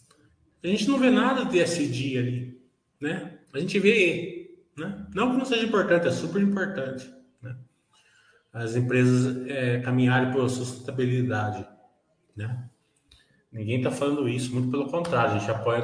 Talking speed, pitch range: 150 wpm, 125-185 Hz